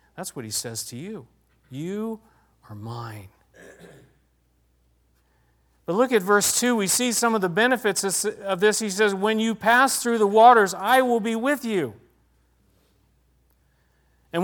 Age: 50-69